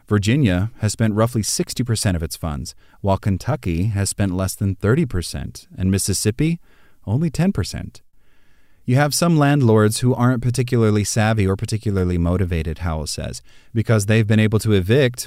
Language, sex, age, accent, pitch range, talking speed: English, male, 30-49, American, 95-120 Hz, 150 wpm